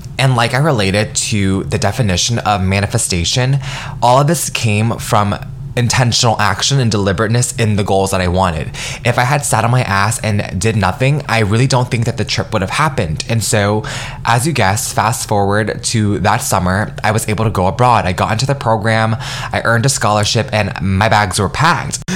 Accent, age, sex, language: American, 20-39, male, English